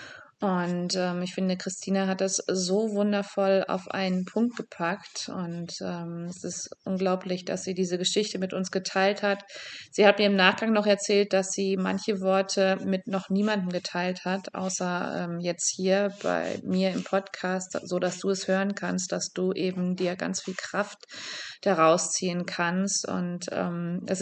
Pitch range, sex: 180-200 Hz, female